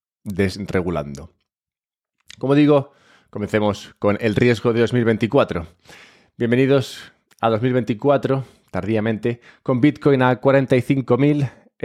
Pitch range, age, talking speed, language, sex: 100-130 Hz, 20-39, 85 wpm, English, male